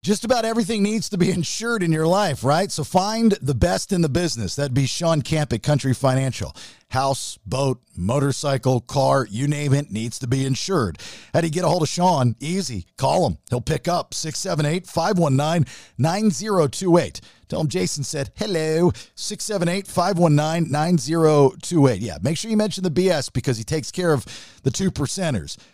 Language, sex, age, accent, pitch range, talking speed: English, male, 50-69, American, 130-185 Hz, 170 wpm